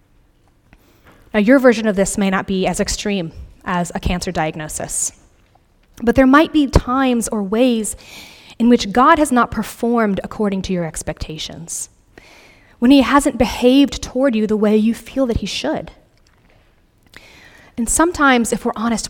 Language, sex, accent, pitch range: English, female, American, 190-260 Hz